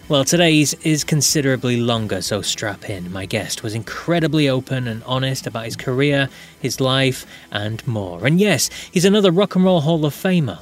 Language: English